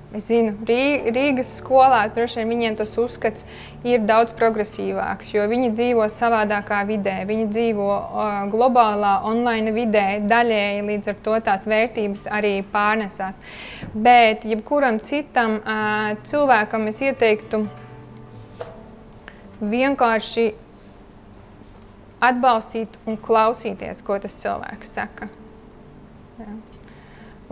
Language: English